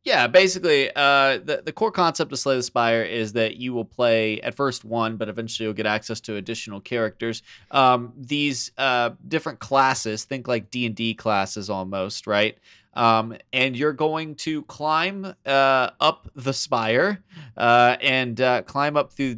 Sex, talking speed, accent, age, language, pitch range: male, 165 wpm, American, 20-39, English, 115-150 Hz